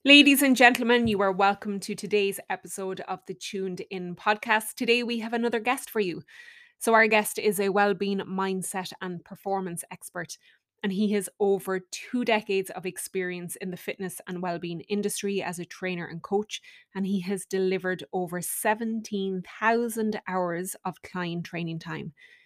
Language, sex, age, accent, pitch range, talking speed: English, female, 20-39, Irish, 185-225 Hz, 165 wpm